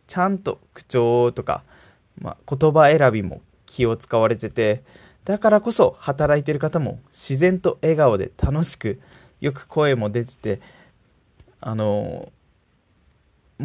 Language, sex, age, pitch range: Japanese, male, 20-39, 120-170 Hz